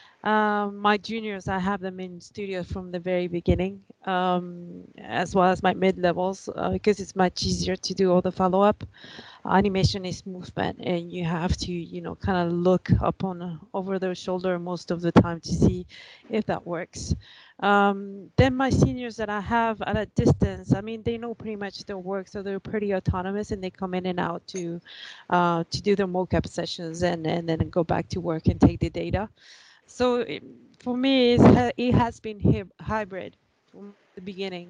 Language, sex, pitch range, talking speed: English, female, 180-205 Hz, 195 wpm